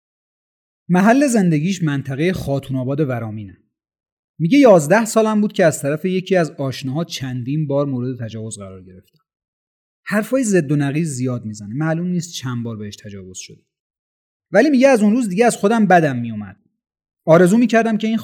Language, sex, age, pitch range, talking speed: Persian, male, 30-49, 130-195 Hz, 160 wpm